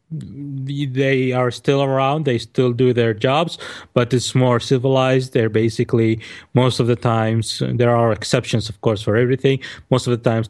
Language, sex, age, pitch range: English, male, 30-49, 115-130 Hz